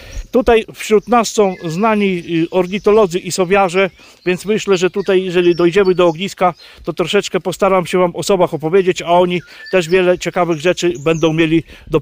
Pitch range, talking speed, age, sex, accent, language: 170-195 Hz, 165 wpm, 50-69, male, native, Polish